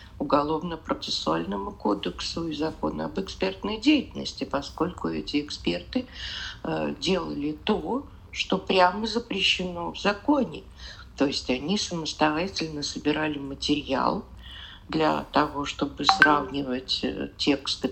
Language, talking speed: Russian, 95 wpm